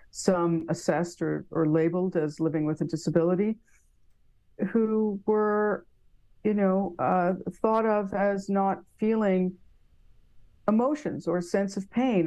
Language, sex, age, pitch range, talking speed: English, female, 50-69, 170-205 Hz, 125 wpm